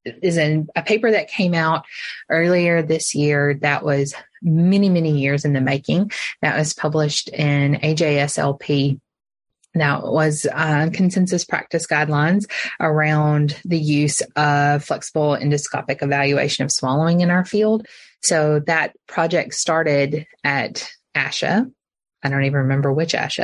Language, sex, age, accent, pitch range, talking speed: English, female, 20-39, American, 145-170 Hz, 140 wpm